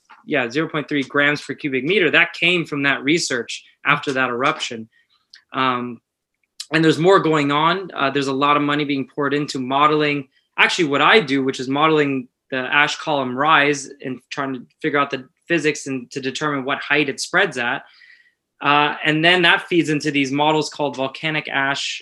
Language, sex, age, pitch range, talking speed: English, male, 20-39, 135-160 Hz, 185 wpm